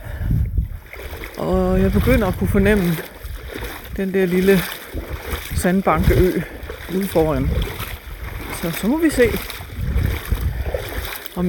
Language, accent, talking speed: Danish, native, 95 wpm